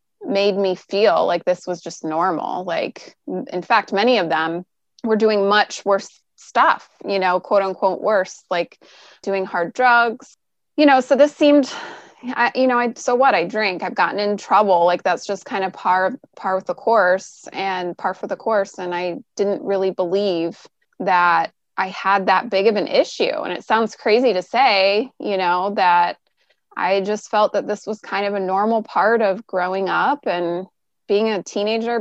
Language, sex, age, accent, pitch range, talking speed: English, female, 20-39, American, 185-225 Hz, 185 wpm